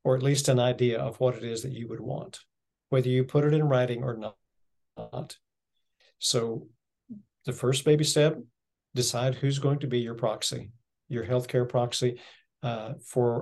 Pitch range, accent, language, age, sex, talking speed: 120-140 Hz, American, English, 50-69, male, 170 wpm